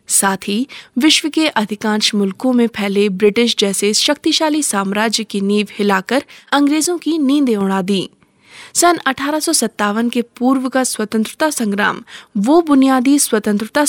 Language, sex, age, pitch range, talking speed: Hindi, female, 20-39, 210-285 Hz, 130 wpm